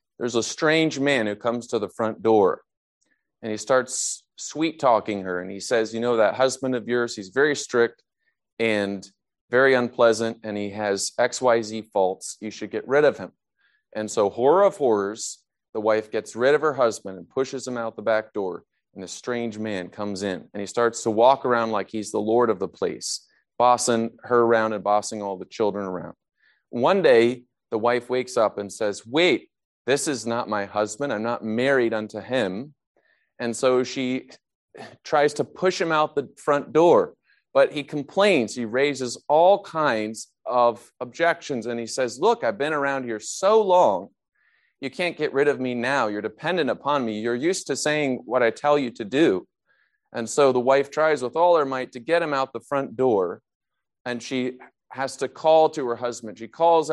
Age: 30-49